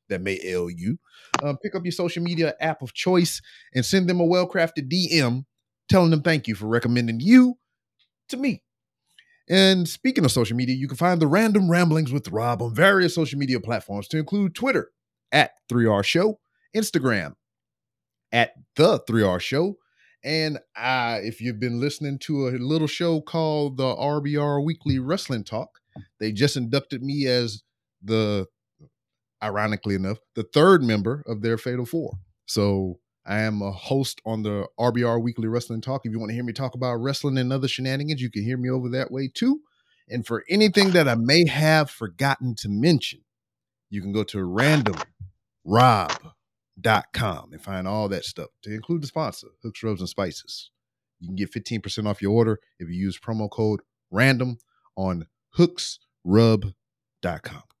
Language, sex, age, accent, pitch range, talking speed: English, male, 30-49, American, 110-155 Hz, 165 wpm